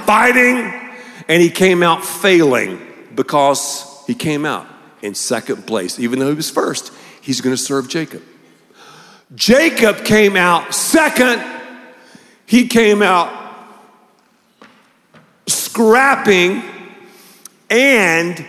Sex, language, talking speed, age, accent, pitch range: male, English, 95 wpm, 50-69, American, 170-245 Hz